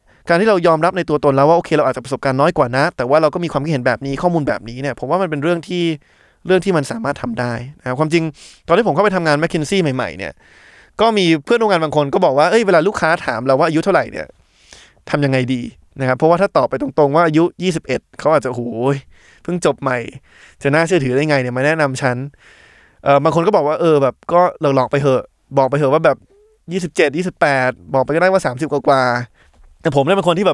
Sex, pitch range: male, 135-170 Hz